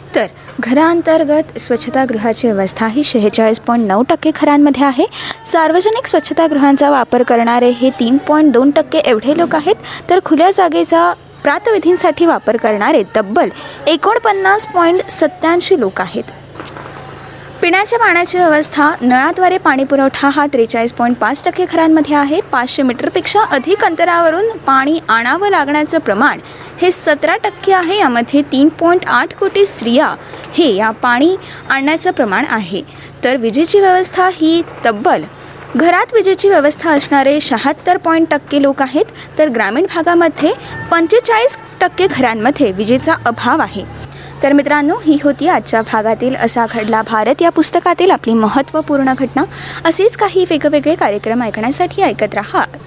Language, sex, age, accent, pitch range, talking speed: Marathi, female, 20-39, native, 260-355 Hz, 125 wpm